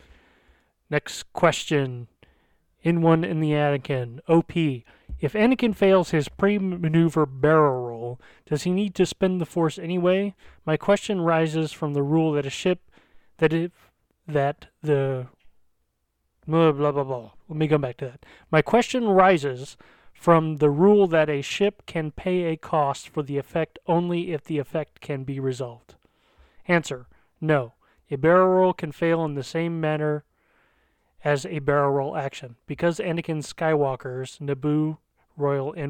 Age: 30-49